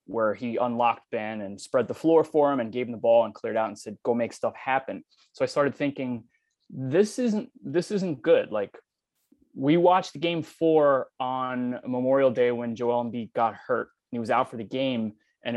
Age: 20-39